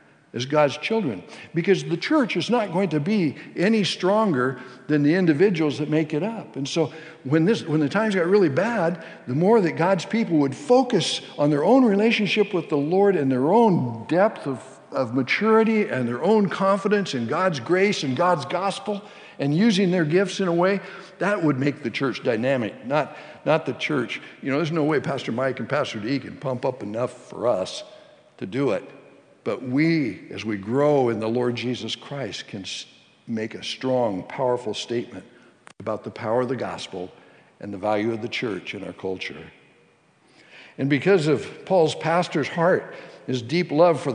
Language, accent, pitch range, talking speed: English, American, 130-195 Hz, 190 wpm